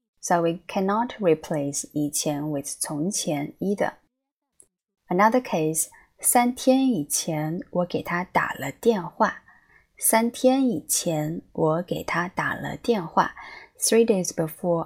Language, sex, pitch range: Chinese, female, 155-205 Hz